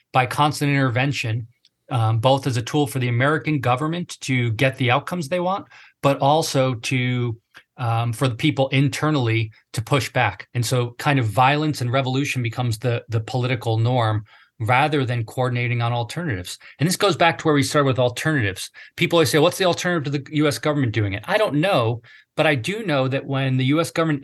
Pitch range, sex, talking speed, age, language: 120-150 Hz, male, 200 wpm, 40-59, English